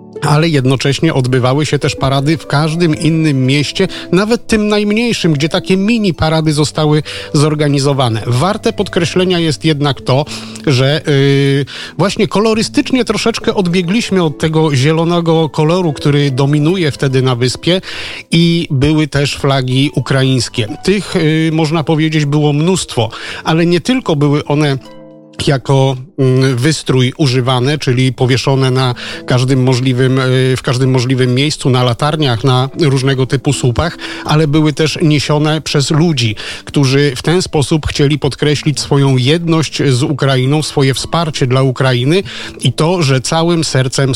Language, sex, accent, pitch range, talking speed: Polish, male, native, 130-160 Hz, 130 wpm